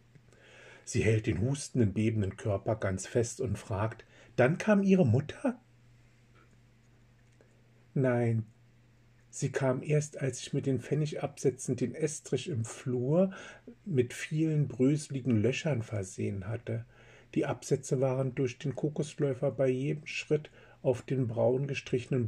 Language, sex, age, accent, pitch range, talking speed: German, male, 50-69, German, 115-135 Hz, 125 wpm